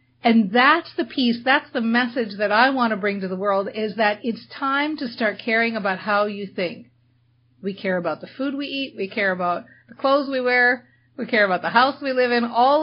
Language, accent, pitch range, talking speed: English, American, 200-255 Hz, 230 wpm